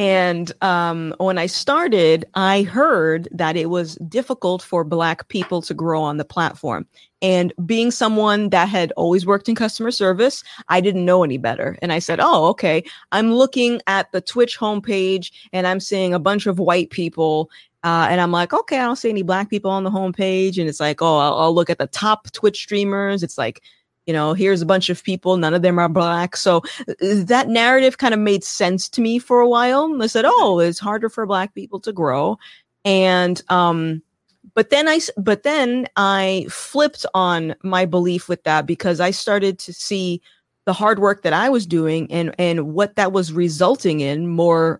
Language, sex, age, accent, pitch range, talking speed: English, female, 30-49, American, 170-205 Hz, 200 wpm